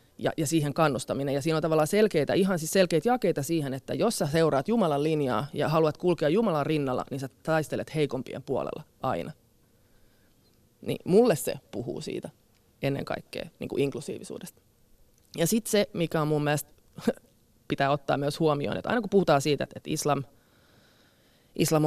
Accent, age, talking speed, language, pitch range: native, 20-39, 165 wpm, Finnish, 135-165 Hz